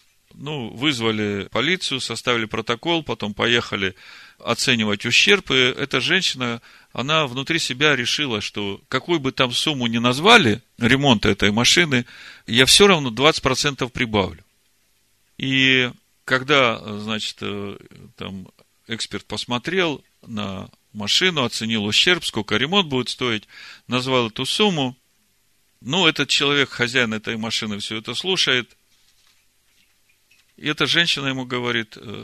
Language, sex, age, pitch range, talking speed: Russian, male, 40-59, 110-135 Hz, 115 wpm